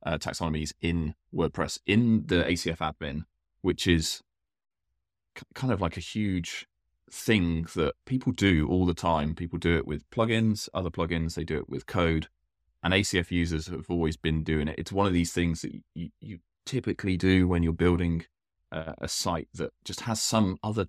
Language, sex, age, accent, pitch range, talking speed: English, male, 20-39, British, 80-95 Hz, 185 wpm